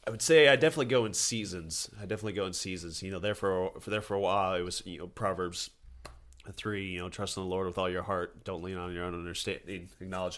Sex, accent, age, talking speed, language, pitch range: male, American, 30-49, 255 wpm, English, 95-115 Hz